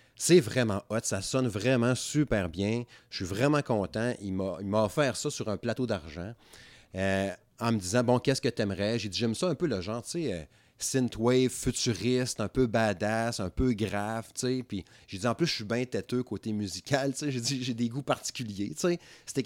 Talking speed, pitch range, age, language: 225 wpm, 105-130 Hz, 30-49, French